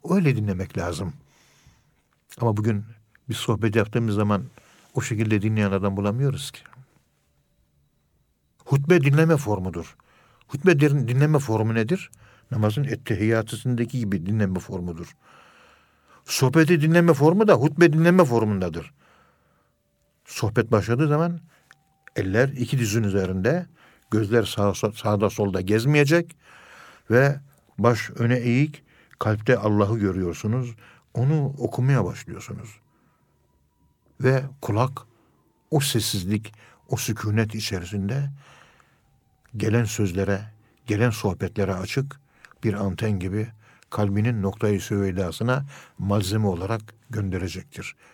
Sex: male